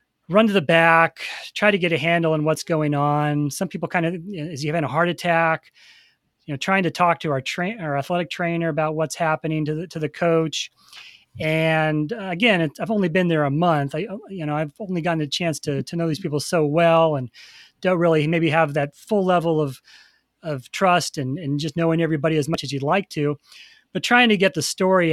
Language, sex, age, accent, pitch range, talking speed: English, male, 30-49, American, 145-175 Hz, 225 wpm